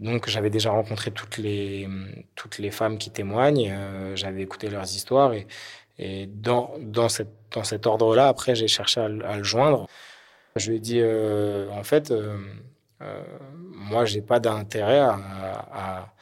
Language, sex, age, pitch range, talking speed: French, male, 20-39, 100-120 Hz, 180 wpm